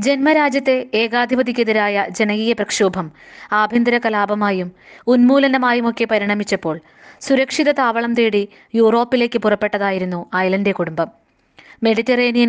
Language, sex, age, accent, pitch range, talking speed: Malayalam, female, 20-39, native, 195-240 Hz, 80 wpm